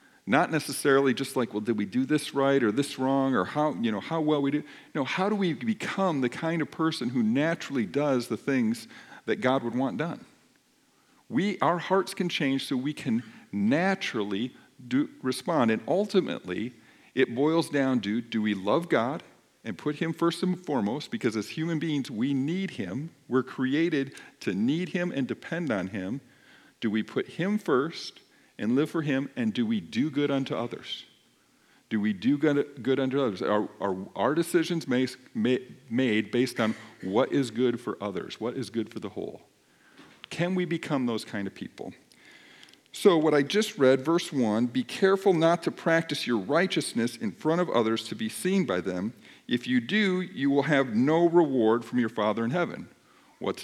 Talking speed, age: 190 wpm, 50-69